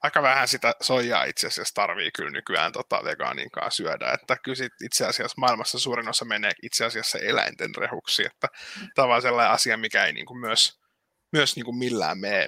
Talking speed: 185 wpm